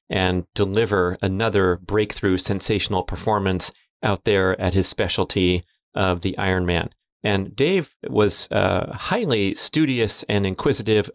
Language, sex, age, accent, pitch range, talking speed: English, male, 30-49, American, 95-110 Hz, 120 wpm